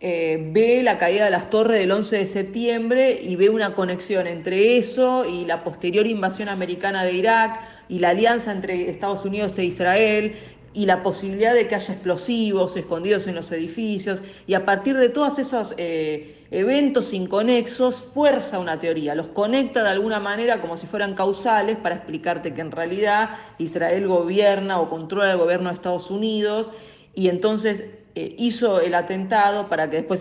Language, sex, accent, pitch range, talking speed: Spanish, female, Argentinian, 165-210 Hz, 175 wpm